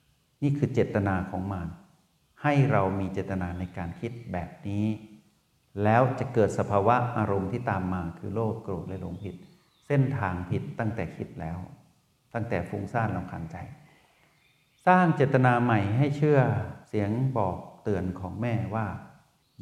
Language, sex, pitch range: Thai, male, 95-130 Hz